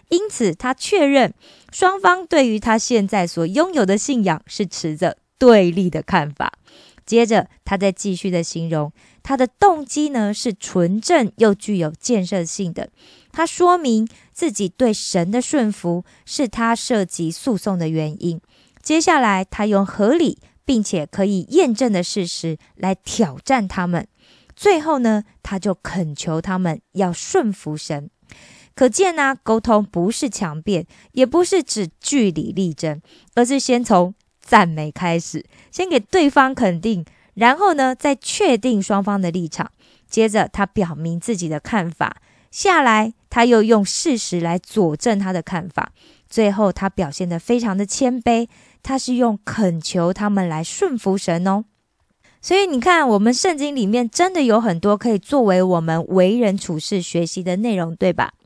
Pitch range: 180-250 Hz